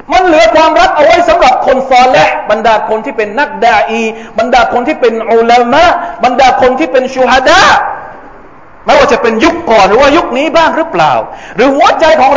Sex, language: male, Thai